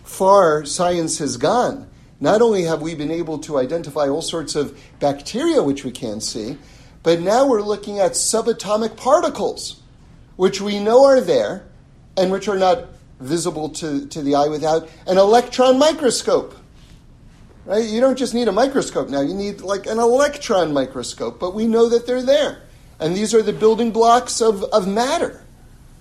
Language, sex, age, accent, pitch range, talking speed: English, male, 40-59, American, 155-230 Hz, 170 wpm